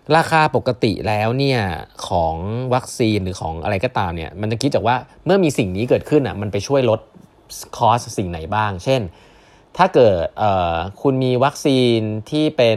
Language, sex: Thai, male